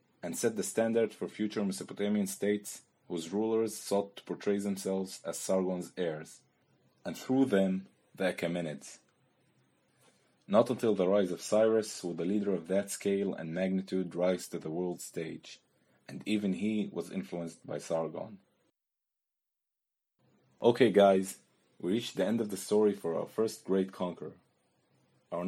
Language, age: English, 30-49